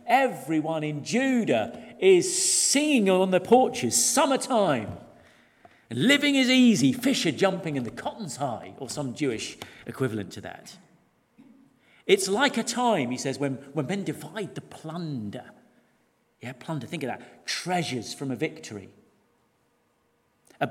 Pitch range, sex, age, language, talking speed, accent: 135-205 Hz, male, 40-59, English, 140 wpm, British